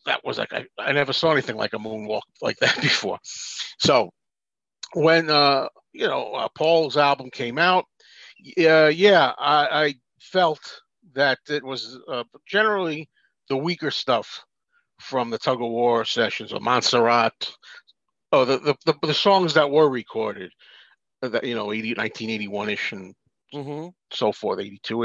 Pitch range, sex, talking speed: 120-165 Hz, male, 170 wpm